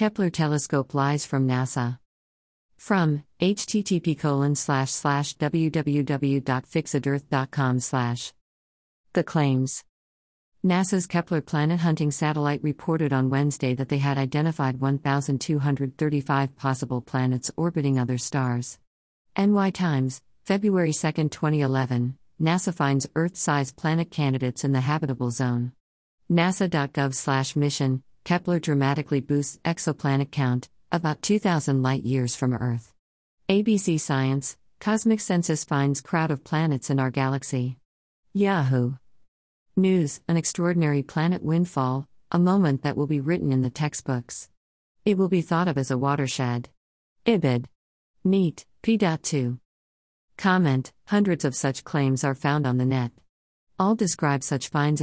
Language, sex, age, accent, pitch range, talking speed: English, female, 50-69, American, 130-160 Hz, 115 wpm